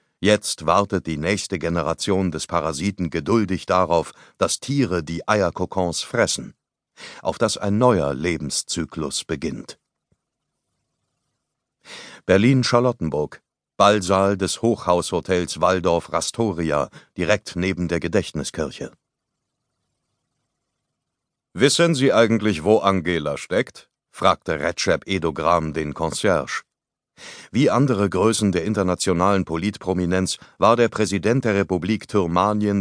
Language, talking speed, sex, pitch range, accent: German, 95 wpm, male, 85-105 Hz, German